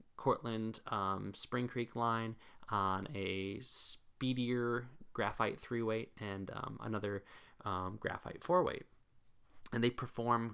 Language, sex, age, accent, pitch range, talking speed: English, male, 20-39, American, 100-130 Hz, 120 wpm